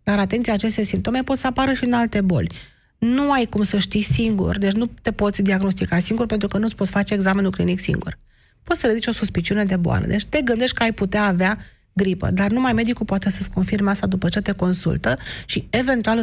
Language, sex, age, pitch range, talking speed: Romanian, female, 30-49, 195-240 Hz, 220 wpm